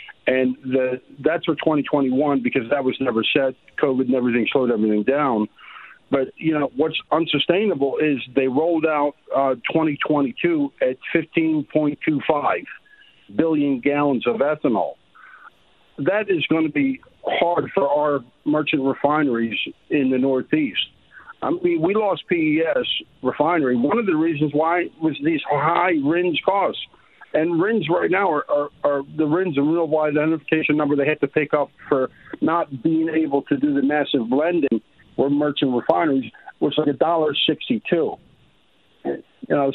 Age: 50-69